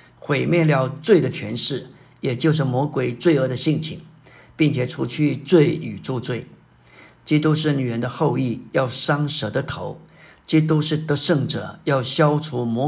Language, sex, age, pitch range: Chinese, male, 50-69, 130-160 Hz